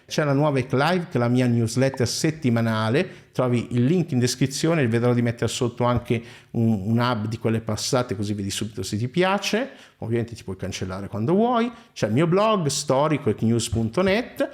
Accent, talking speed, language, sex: native, 180 wpm, Italian, male